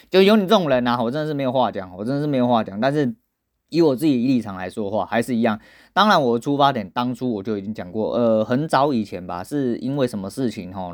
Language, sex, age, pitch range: Chinese, male, 20-39, 110-150 Hz